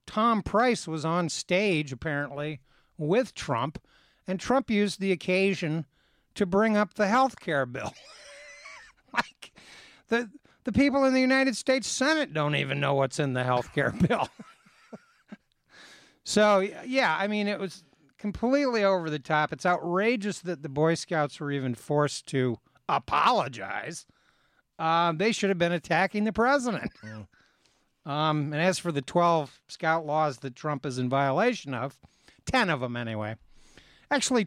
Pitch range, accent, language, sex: 140-205 Hz, American, English, male